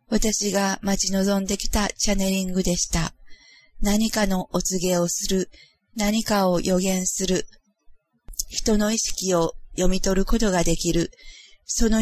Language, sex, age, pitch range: Japanese, female, 40-59, 185-215 Hz